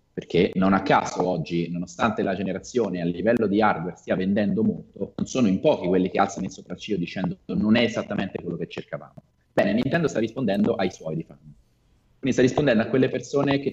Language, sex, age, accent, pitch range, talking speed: Italian, male, 30-49, native, 90-115 Hz, 200 wpm